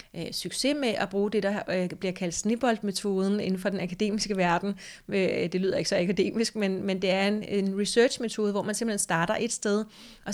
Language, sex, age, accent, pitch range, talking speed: Danish, female, 30-49, native, 180-205 Hz, 180 wpm